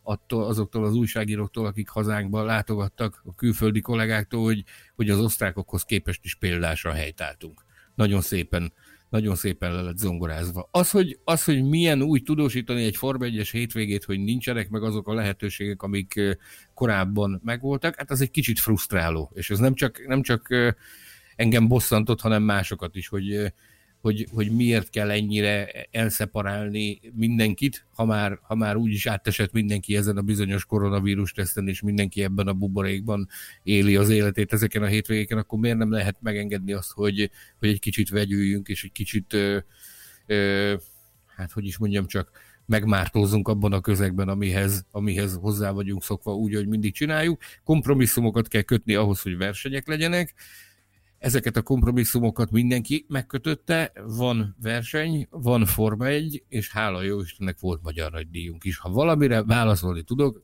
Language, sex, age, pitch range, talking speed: Hungarian, male, 60-79, 100-115 Hz, 155 wpm